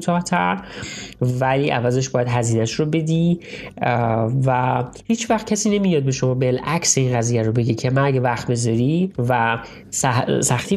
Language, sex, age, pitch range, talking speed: Persian, male, 30-49, 125-165 Hz, 150 wpm